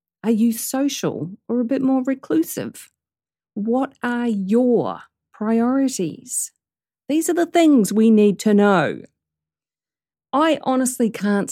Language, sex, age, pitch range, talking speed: English, female, 40-59, 180-245 Hz, 120 wpm